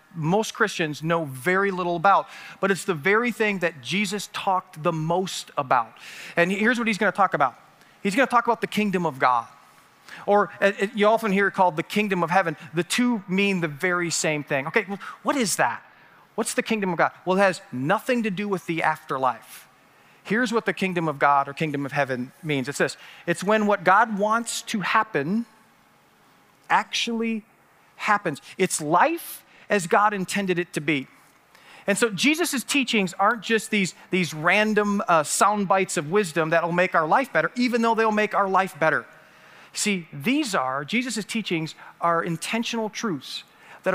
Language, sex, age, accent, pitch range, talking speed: English, male, 40-59, American, 170-220 Hz, 185 wpm